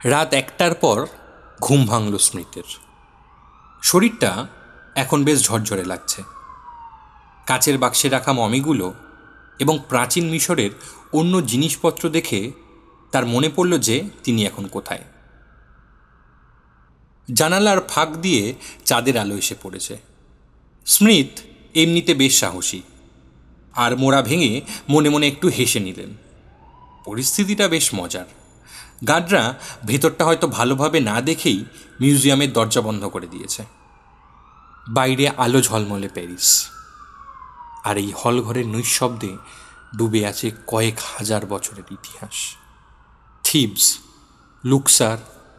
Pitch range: 105-150 Hz